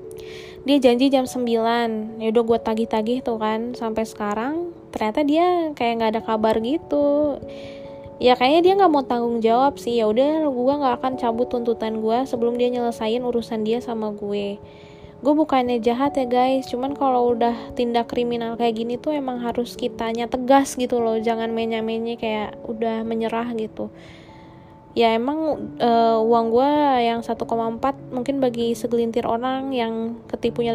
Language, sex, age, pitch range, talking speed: Indonesian, female, 20-39, 230-260 Hz, 155 wpm